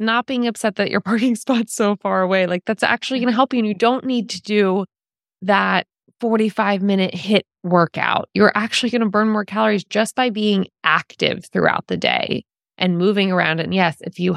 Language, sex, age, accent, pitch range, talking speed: English, female, 20-39, American, 180-230 Hz, 200 wpm